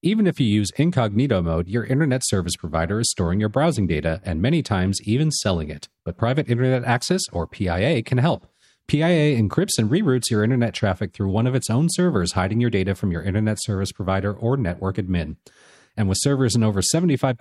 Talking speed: 205 wpm